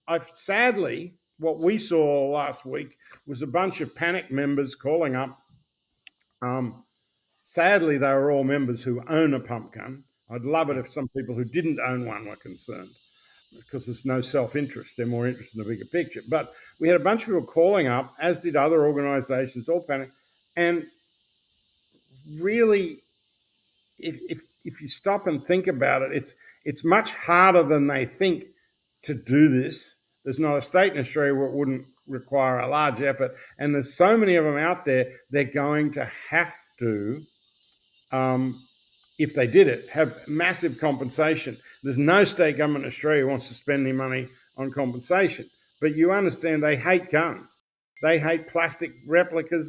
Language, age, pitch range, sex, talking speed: English, 50-69, 135-170 Hz, male, 175 wpm